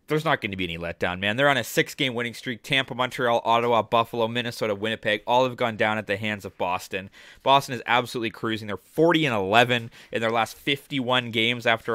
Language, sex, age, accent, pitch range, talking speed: English, male, 20-39, American, 110-135 Hz, 220 wpm